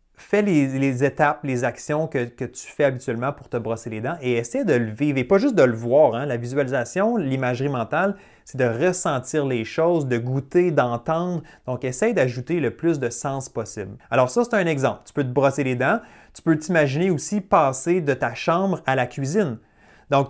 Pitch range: 125-165 Hz